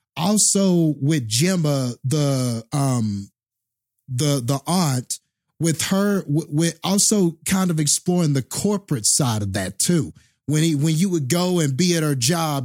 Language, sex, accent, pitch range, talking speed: English, male, American, 140-180 Hz, 150 wpm